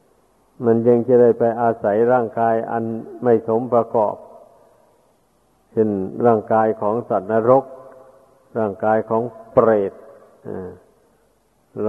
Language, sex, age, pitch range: Thai, male, 60-79, 110-125 Hz